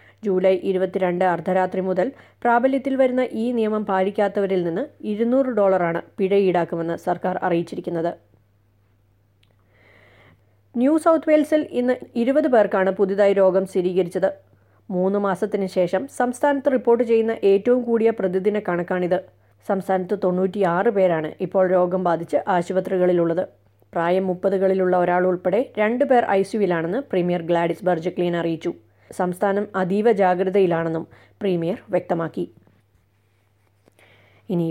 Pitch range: 175-210 Hz